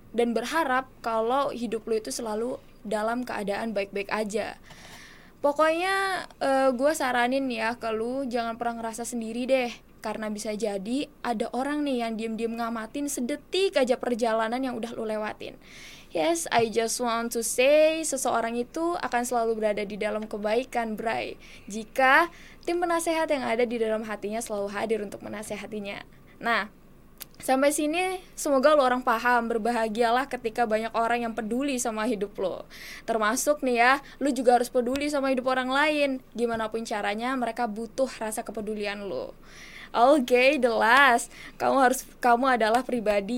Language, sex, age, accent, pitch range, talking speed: Indonesian, female, 10-29, native, 220-260 Hz, 150 wpm